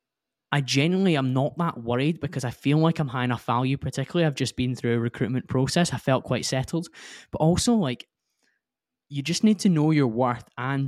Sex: male